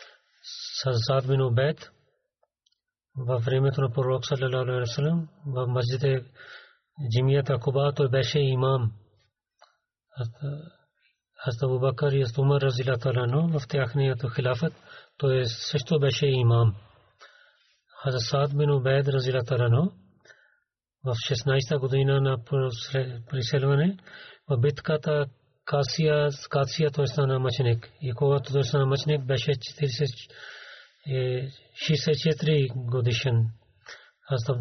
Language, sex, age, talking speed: Bulgarian, male, 40-59, 50 wpm